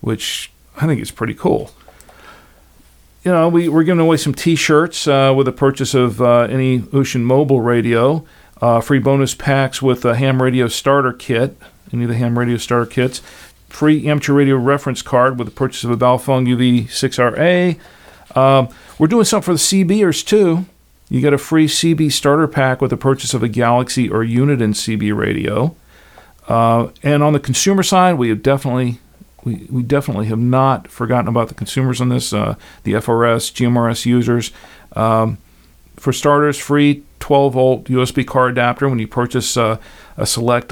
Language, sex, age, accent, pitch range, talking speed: English, male, 40-59, American, 120-140 Hz, 170 wpm